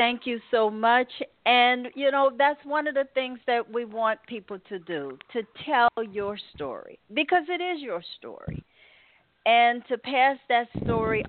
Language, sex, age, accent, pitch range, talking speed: English, female, 50-69, American, 175-265 Hz, 170 wpm